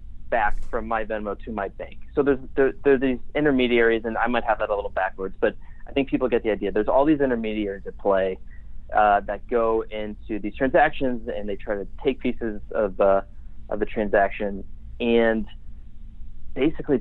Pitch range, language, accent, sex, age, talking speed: 105-125 Hz, English, American, male, 30-49, 190 wpm